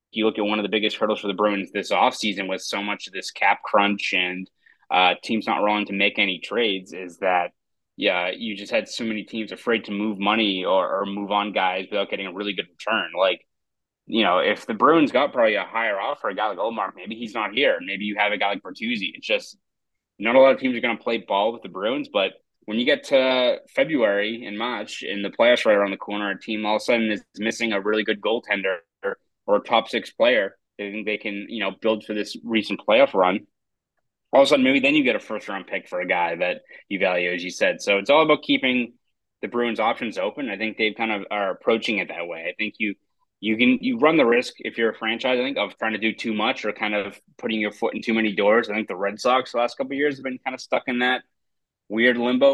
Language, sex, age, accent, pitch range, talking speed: English, male, 20-39, American, 105-125 Hz, 260 wpm